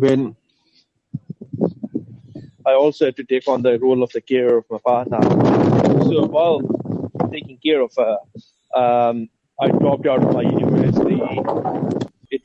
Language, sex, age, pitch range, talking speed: English, male, 30-49, 125-145 Hz, 140 wpm